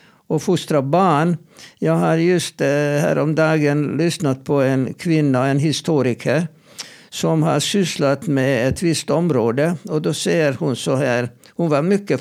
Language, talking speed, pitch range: Swedish, 150 wpm, 140-170 Hz